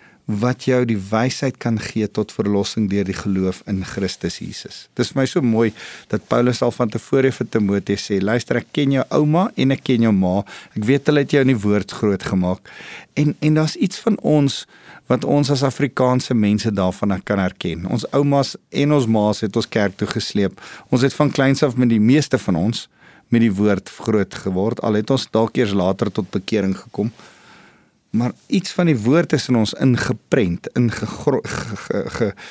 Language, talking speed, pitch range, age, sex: English, 200 wpm, 105-135 Hz, 50-69, male